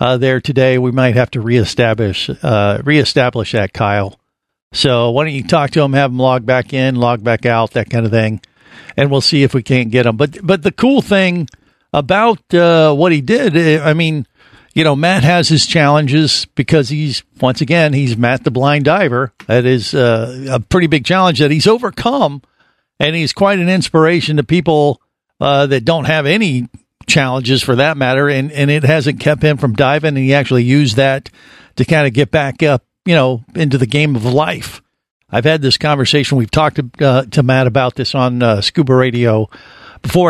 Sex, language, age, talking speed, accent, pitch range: male, English, 50-69, 200 wpm, American, 130-160 Hz